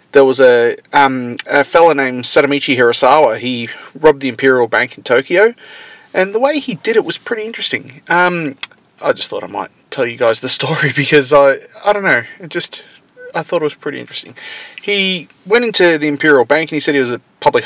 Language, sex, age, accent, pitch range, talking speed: English, male, 30-49, Australian, 135-215 Hz, 210 wpm